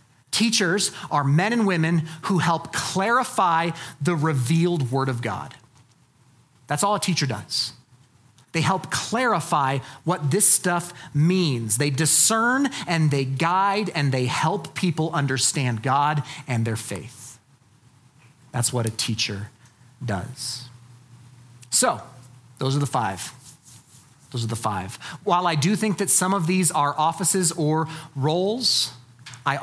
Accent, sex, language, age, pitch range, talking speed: American, male, English, 40-59, 125-180 Hz, 135 wpm